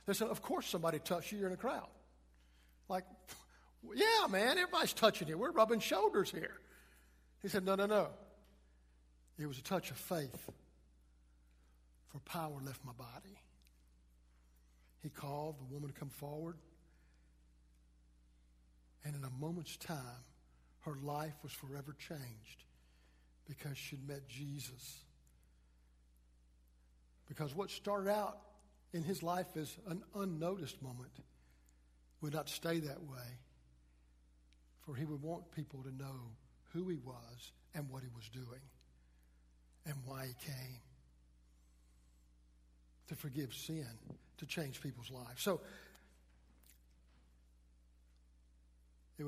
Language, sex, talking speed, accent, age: English, male, 125 wpm, American, 60-79